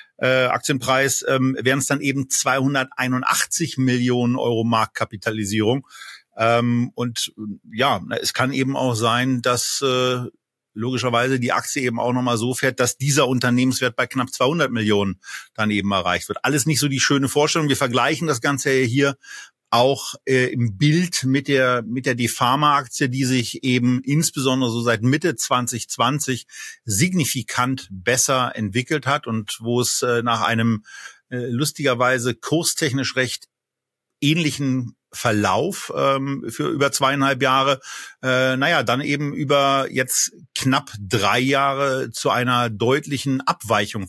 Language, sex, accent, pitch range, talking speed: German, male, German, 120-140 Hz, 135 wpm